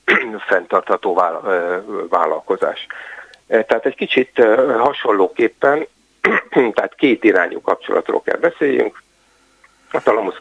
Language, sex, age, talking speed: Hungarian, male, 60-79, 80 wpm